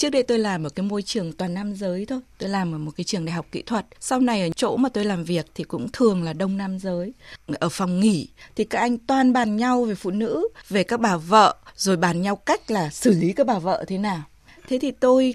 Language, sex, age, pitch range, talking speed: Vietnamese, female, 20-39, 185-255 Hz, 265 wpm